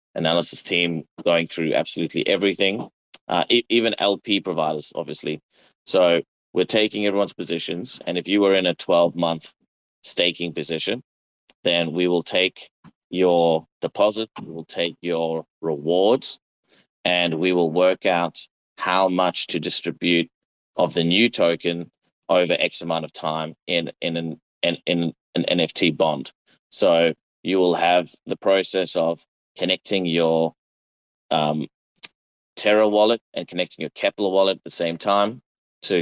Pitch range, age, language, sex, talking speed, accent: 85-95 Hz, 30-49, English, male, 140 wpm, Australian